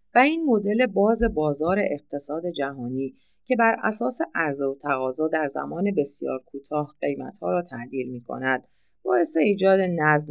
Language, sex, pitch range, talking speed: Persian, female, 130-205 Hz, 140 wpm